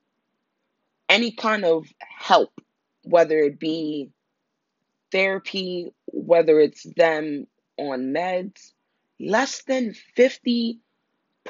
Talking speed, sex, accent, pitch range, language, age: 95 wpm, female, American, 170-230 Hz, English, 20-39